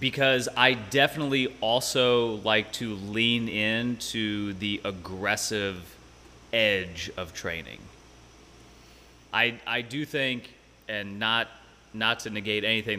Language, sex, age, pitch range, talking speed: English, male, 30-49, 95-110 Hz, 105 wpm